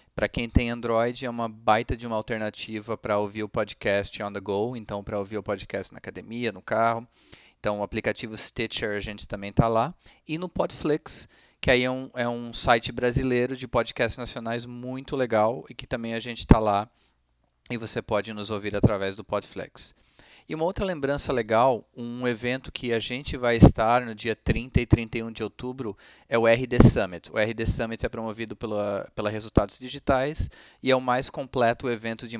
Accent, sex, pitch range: Brazilian, male, 110-130 Hz